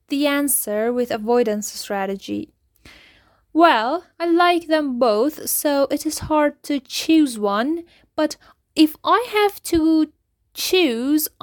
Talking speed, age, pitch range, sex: 120 wpm, 10-29, 215-290 Hz, female